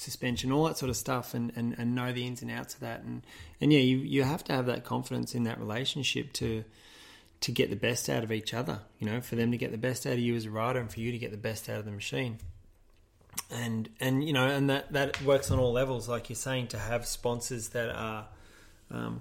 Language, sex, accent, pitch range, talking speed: English, male, Australian, 110-135 Hz, 260 wpm